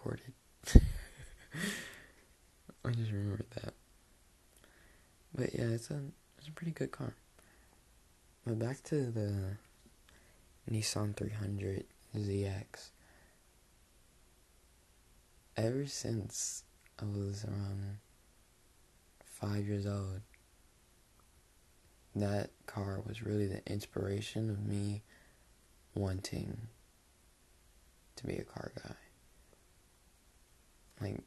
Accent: American